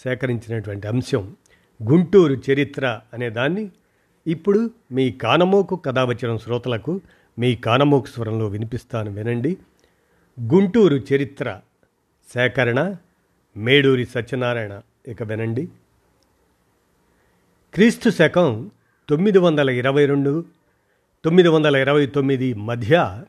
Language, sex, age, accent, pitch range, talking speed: Telugu, male, 50-69, native, 120-165 Hz, 70 wpm